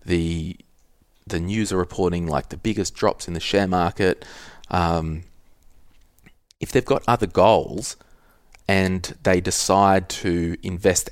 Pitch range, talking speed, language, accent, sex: 80-95 Hz, 130 wpm, English, Australian, male